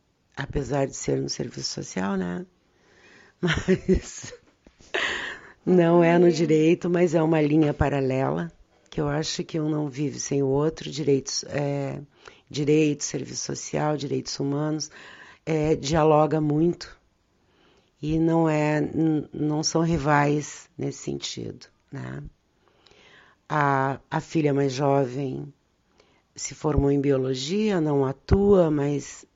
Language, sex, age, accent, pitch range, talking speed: Portuguese, female, 50-69, Brazilian, 140-160 Hz, 120 wpm